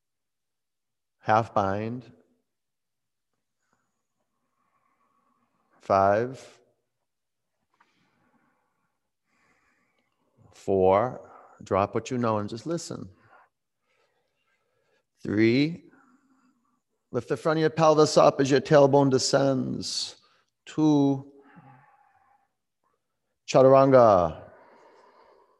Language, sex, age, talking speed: English, male, 50-69, 60 wpm